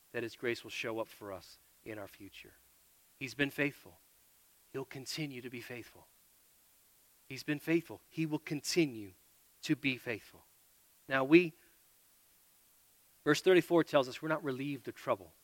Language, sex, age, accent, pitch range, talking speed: English, male, 40-59, American, 110-150 Hz, 150 wpm